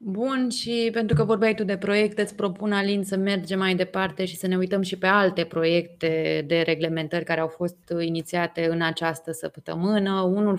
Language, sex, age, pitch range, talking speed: Romanian, female, 20-39, 165-190 Hz, 185 wpm